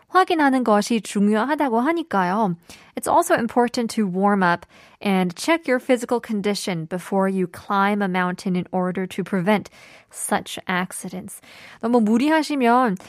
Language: Korean